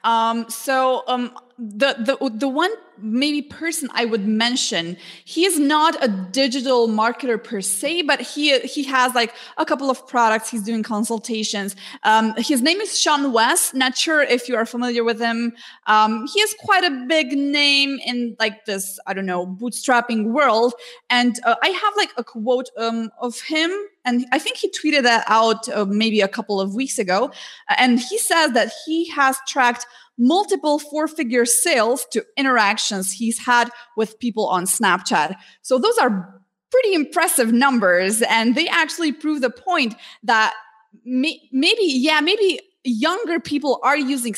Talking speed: 170 wpm